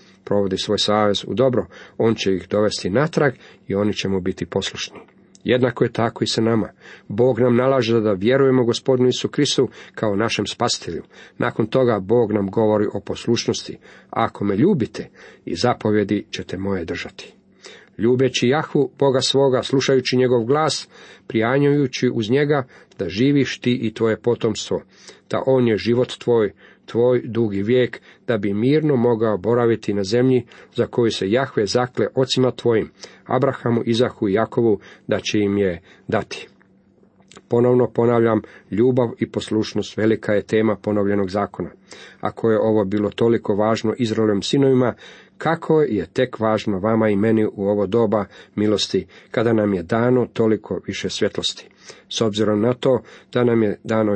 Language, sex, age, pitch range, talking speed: Croatian, male, 40-59, 105-125 Hz, 155 wpm